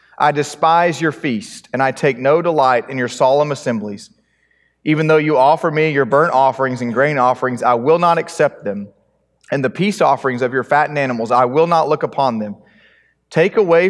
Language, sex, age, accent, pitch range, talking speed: English, male, 30-49, American, 125-165 Hz, 195 wpm